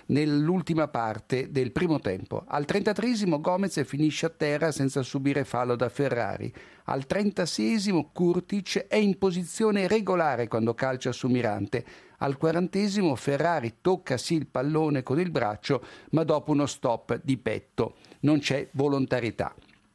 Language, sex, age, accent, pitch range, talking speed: Italian, male, 50-69, native, 130-170 Hz, 140 wpm